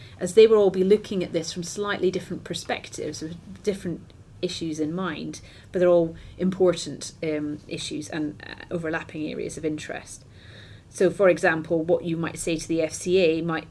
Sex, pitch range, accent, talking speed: female, 155-180 Hz, British, 175 wpm